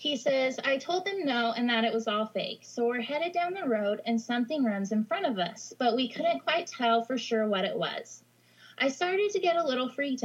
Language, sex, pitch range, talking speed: English, female, 215-270 Hz, 245 wpm